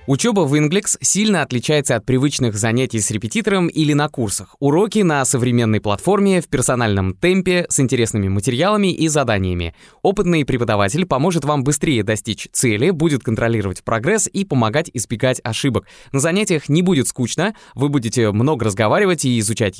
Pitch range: 115-165 Hz